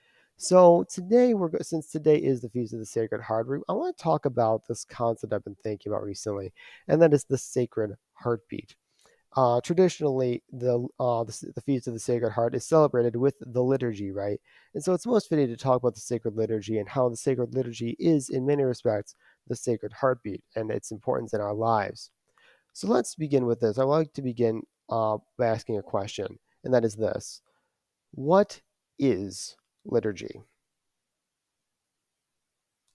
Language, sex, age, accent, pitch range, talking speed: English, male, 30-49, American, 115-150 Hz, 170 wpm